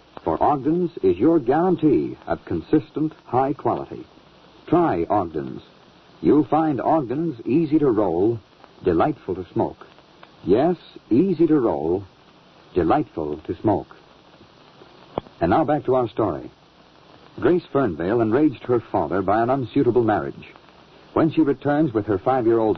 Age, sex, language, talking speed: 60-79, male, English, 125 wpm